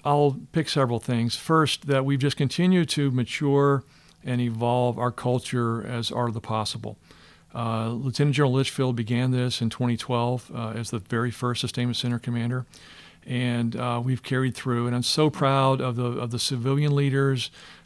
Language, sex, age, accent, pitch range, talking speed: English, male, 50-69, American, 115-135 Hz, 170 wpm